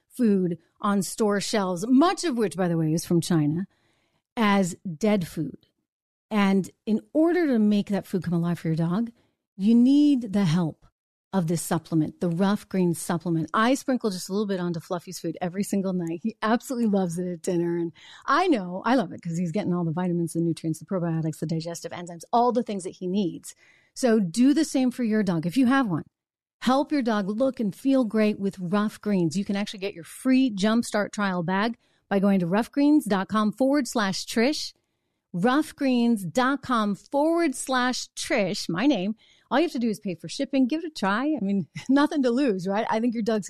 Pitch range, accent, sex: 175-240 Hz, American, female